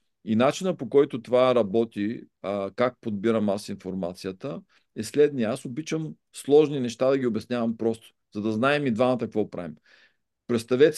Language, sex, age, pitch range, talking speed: Bulgarian, male, 50-69, 115-145 Hz, 160 wpm